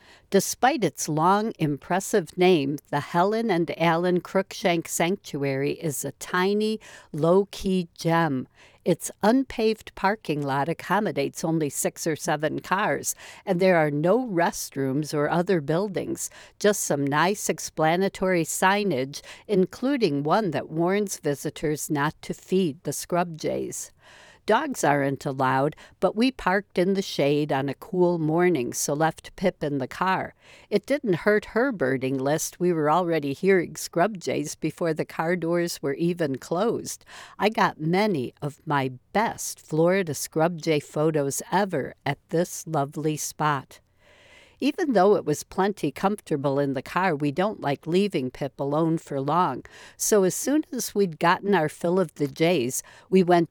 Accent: American